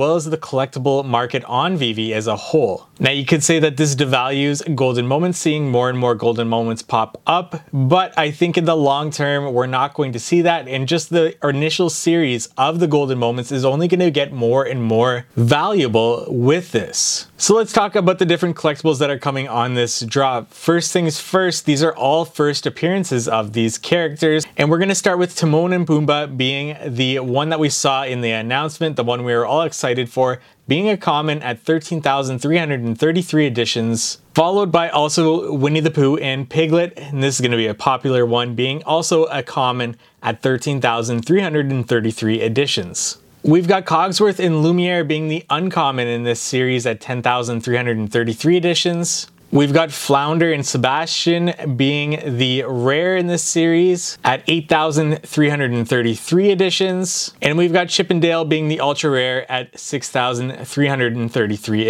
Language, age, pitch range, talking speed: English, 20-39, 125-165 Hz, 170 wpm